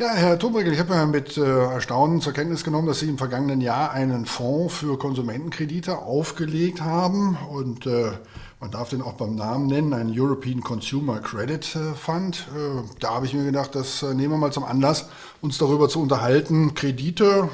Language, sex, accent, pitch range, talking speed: German, male, German, 125-150 Hz, 170 wpm